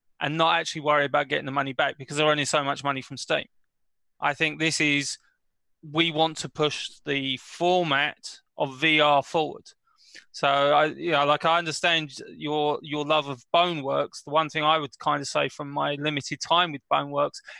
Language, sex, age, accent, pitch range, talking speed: English, male, 20-39, British, 145-165 Hz, 200 wpm